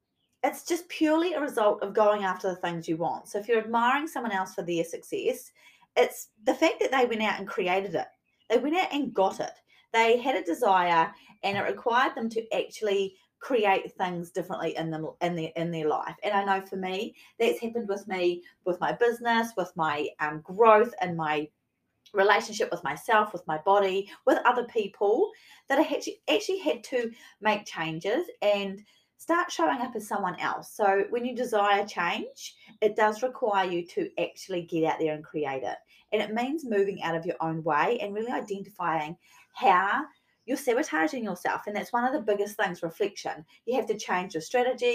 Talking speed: 195 wpm